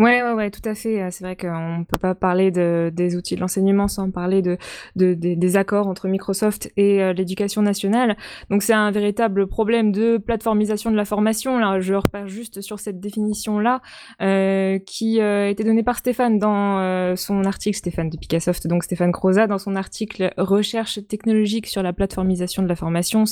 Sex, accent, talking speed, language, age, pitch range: female, French, 200 wpm, French, 20-39, 180-215 Hz